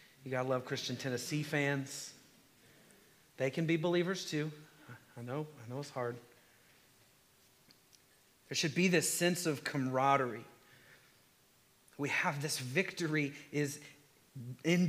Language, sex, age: English, male, 40-59